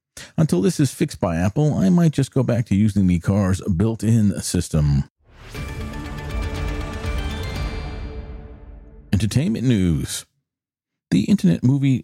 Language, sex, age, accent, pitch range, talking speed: English, male, 50-69, American, 85-120 Hz, 110 wpm